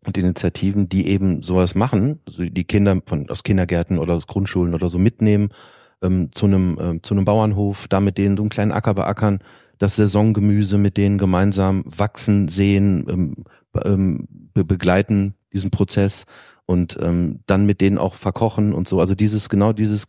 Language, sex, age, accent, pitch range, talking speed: German, male, 40-59, German, 90-105 Hz, 170 wpm